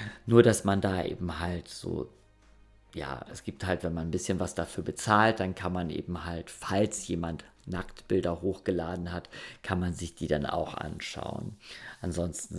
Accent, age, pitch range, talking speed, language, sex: German, 50-69, 85-105 Hz, 170 wpm, German, male